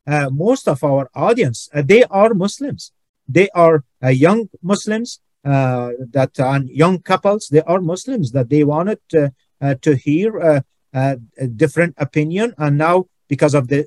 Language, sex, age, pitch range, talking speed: English, male, 50-69, 145-185 Hz, 165 wpm